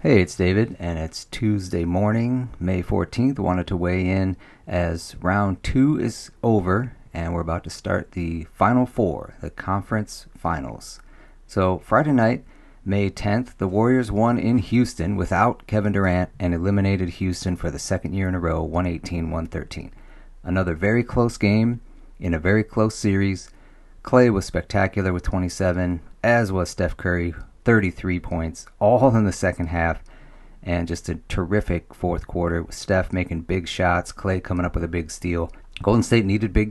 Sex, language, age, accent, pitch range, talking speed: male, English, 40-59, American, 90-110 Hz, 165 wpm